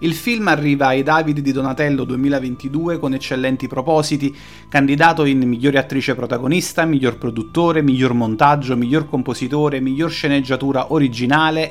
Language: Italian